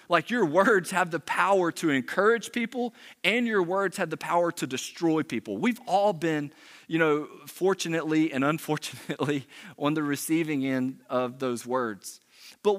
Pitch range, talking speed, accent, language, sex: 120-165 Hz, 160 wpm, American, English, male